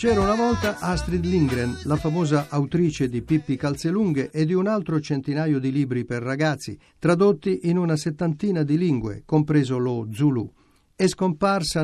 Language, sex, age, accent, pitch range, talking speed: Italian, male, 50-69, native, 135-175 Hz, 155 wpm